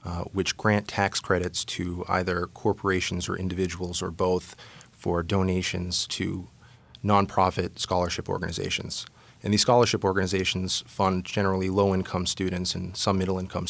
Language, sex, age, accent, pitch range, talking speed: English, male, 30-49, American, 90-105 Hz, 125 wpm